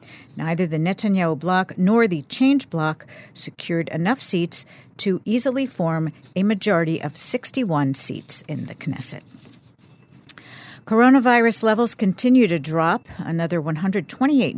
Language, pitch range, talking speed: English, 160-215 Hz, 120 wpm